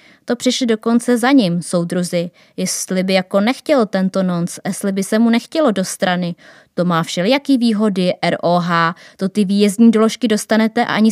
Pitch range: 180-230 Hz